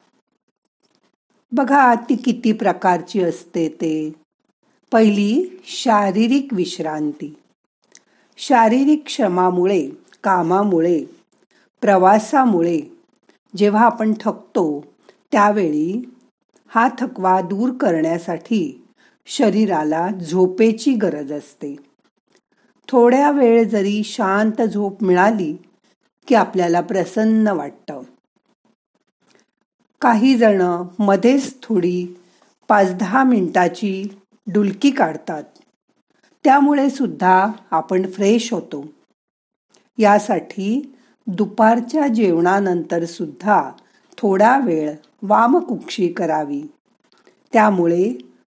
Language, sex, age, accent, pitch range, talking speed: Marathi, female, 50-69, native, 180-245 Hz, 70 wpm